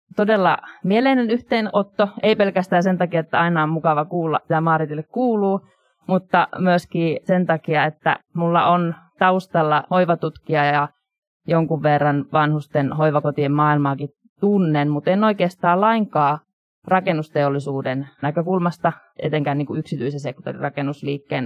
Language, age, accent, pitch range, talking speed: Finnish, 20-39, native, 145-180 Hz, 115 wpm